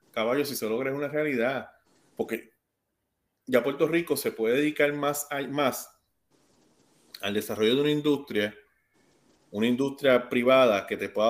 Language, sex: Spanish, male